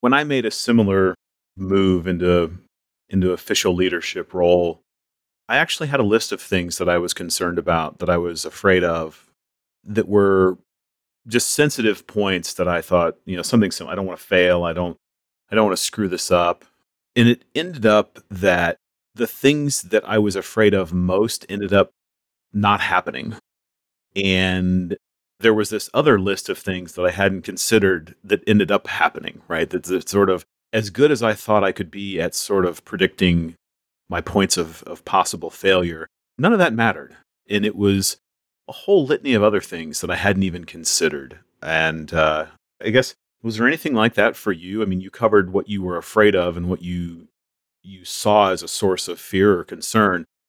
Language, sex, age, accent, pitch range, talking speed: English, male, 40-59, American, 85-105 Hz, 190 wpm